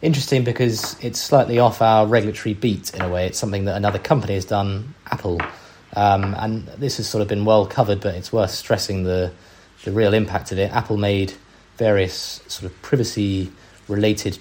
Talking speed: 185 wpm